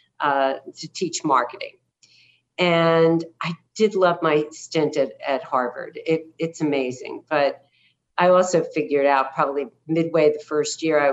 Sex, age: female, 40-59